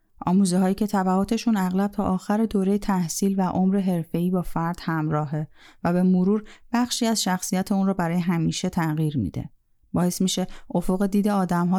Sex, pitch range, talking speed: female, 175-200 Hz, 160 wpm